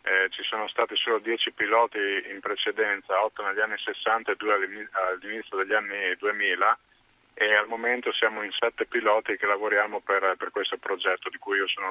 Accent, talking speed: native, 180 wpm